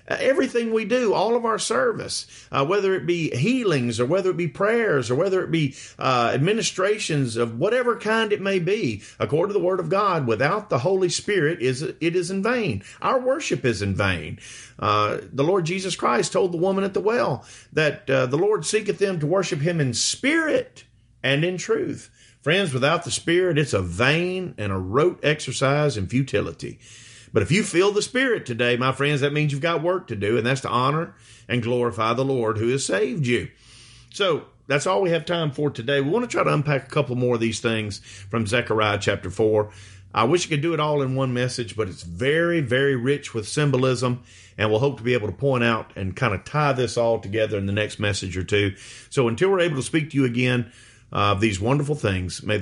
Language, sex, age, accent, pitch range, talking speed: English, male, 40-59, American, 115-175 Hz, 220 wpm